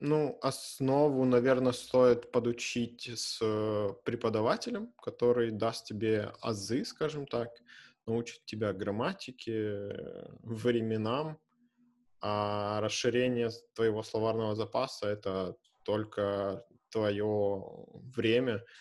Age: 20-39